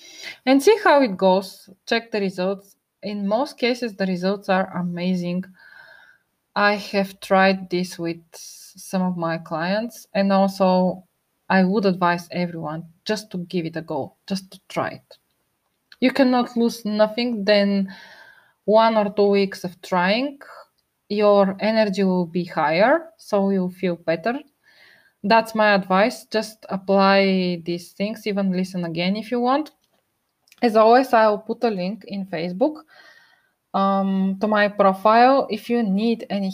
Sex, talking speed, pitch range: female, 150 wpm, 185-225 Hz